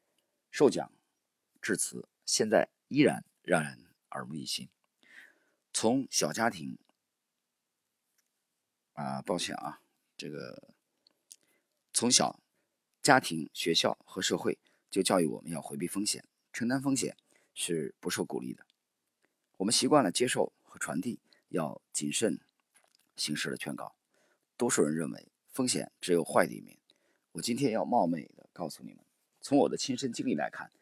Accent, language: native, Chinese